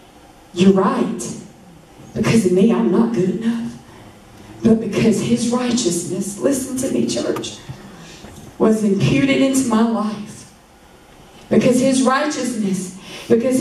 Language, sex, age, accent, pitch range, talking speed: English, female, 40-59, American, 185-230 Hz, 115 wpm